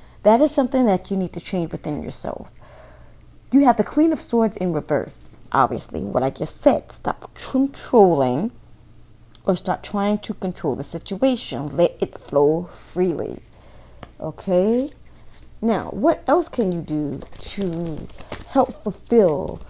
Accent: American